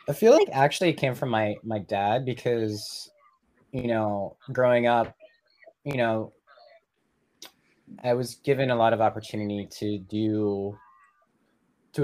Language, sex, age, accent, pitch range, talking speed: English, male, 20-39, American, 110-135 Hz, 135 wpm